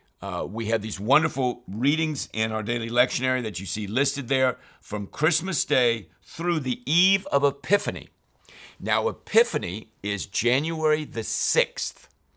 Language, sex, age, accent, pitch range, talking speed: English, male, 50-69, American, 95-130 Hz, 140 wpm